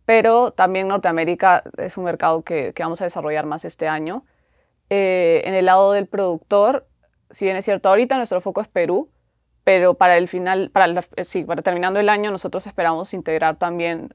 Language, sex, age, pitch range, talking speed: English, female, 20-39, 175-200 Hz, 185 wpm